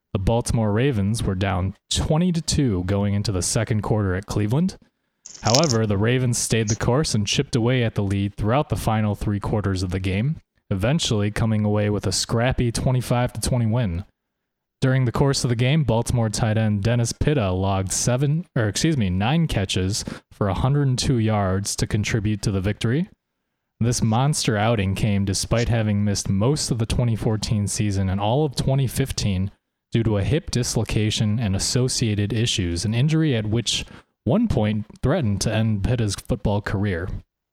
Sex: male